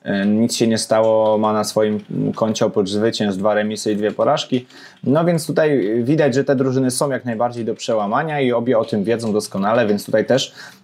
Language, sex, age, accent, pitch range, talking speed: Polish, male, 20-39, native, 105-130 Hz, 200 wpm